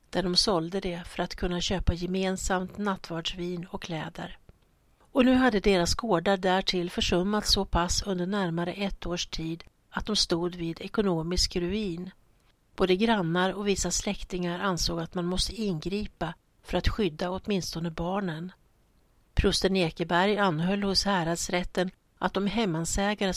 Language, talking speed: Swedish, 140 wpm